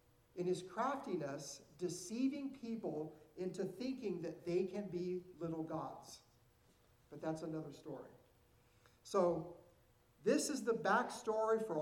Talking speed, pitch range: 115 wpm, 145-205 Hz